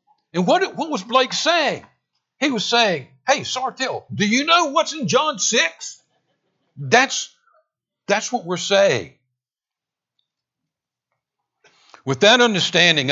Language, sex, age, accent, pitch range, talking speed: English, male, 60-79, American, 135-200 Hz, 120 wpm